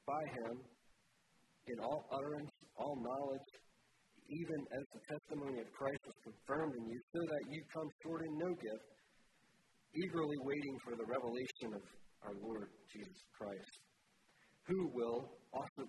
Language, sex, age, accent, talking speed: English, male, 50-69, American, 145 wpm